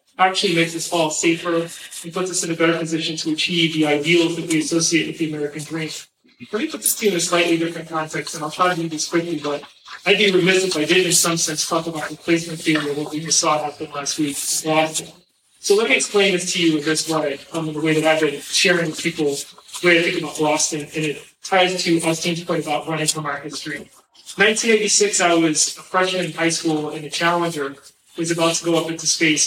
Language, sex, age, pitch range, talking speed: English, male, 30-49, 155-180 Hz, 240 wpm